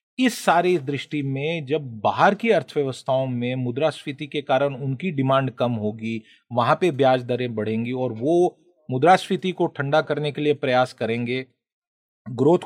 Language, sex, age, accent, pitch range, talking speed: Hindi, male, 40-59, native, 125-170 Hz, 150 wpm